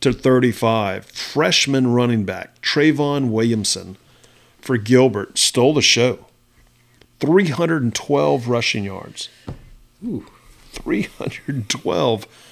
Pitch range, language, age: 105-130 Hz, English, 40-59